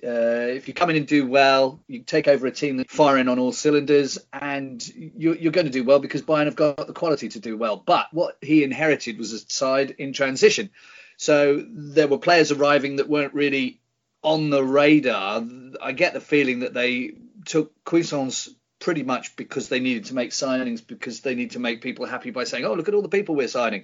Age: 40-59